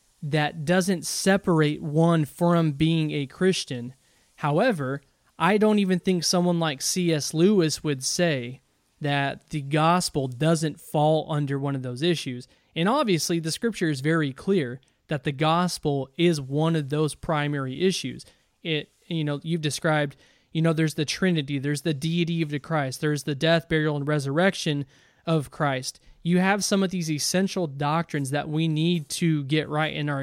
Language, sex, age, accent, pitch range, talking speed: English, male, 20-39, American, 145-175 Hz, 165 wpm